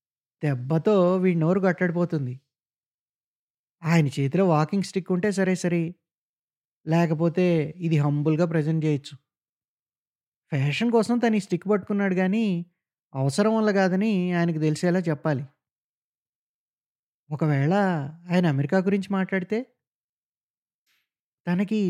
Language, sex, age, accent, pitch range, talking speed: Telugu, male, 20-39, native, 145-190 Hz, 95 wpm